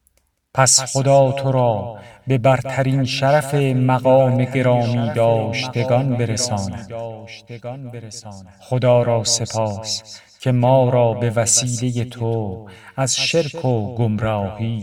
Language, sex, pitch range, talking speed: Persian, male, 110-130 Hz, 95 wpm